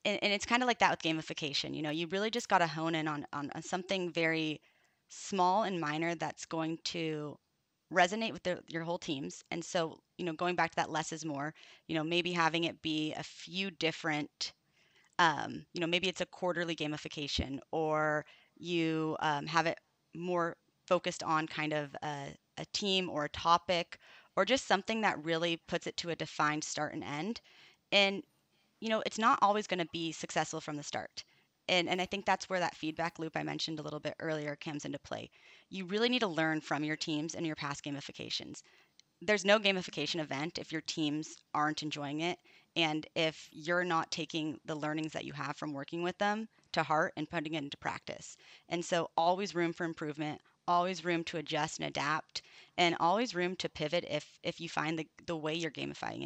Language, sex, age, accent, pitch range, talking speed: English, female, 30-49, American, 155-180 Hz, 200 wpm